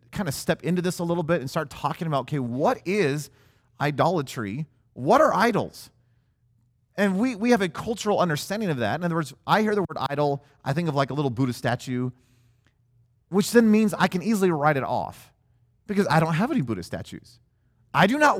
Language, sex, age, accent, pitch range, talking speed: English, male, 30-49, American, 120-170 Hz, 205 wpm